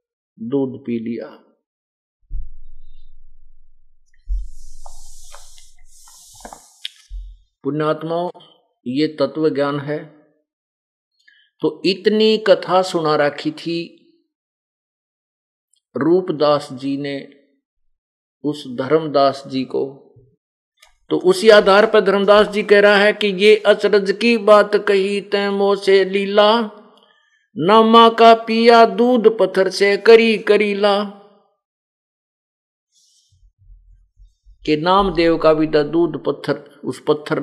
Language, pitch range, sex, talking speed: Hindi, 135-205 Hz, male, 90 wpm